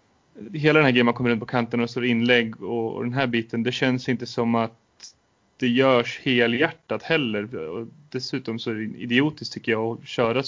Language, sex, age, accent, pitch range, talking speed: Swedish, male, 30-49, native, 115-135 Hz, 195 wpm